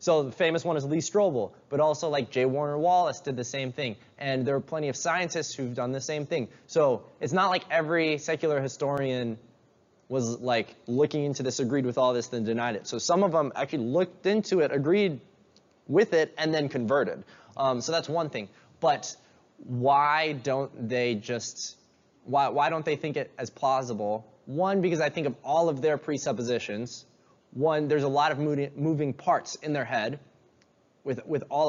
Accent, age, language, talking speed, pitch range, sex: American, 20-39, English, 190 wpm, 125-155 Hz, male